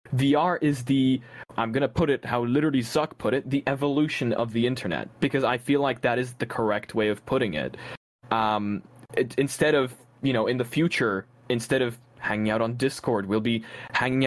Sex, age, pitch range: male, 20-39, 115-150 Hz